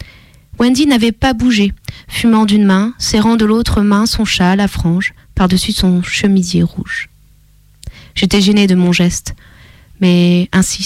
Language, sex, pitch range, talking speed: French, female, 185-230 Hz, 145 wpm